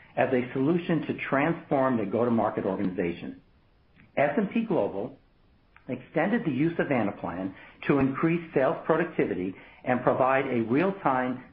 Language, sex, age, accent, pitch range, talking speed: English, male, 60-79, American, 120-155 Hz, 120 wpm